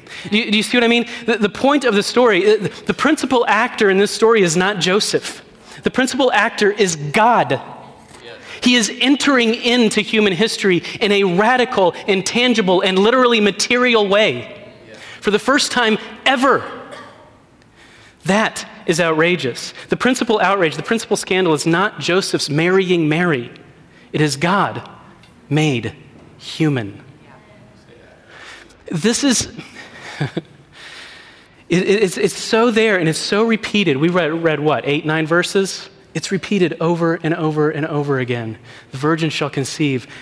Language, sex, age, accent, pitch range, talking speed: English, male, 30-49, American, 150-210 Hz, 135 wpm